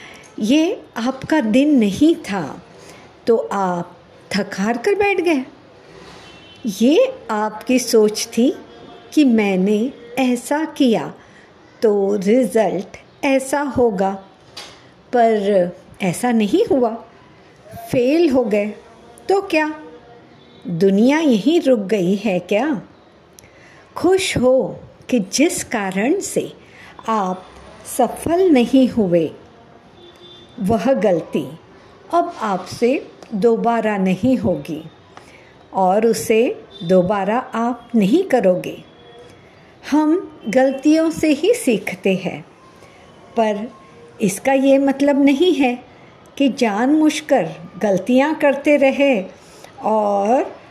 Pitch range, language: 205-270 Hz, Hindi